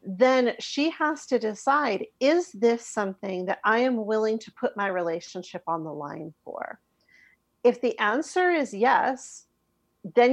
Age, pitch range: 40-59, 195-245 Hz